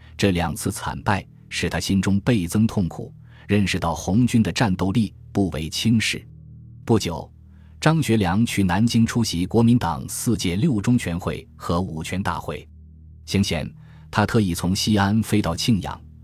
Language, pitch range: Chinese, 85-115 Hz